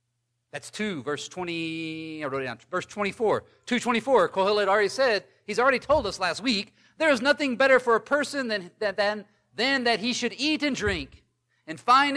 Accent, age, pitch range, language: American, 40-59, 120-195 Hz, English